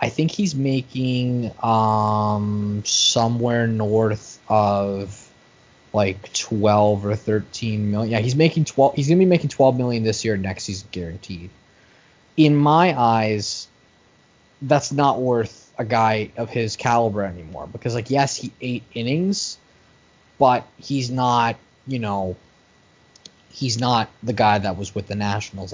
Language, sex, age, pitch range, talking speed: English, male, 20-39, 105-125 Hz, 145 wpm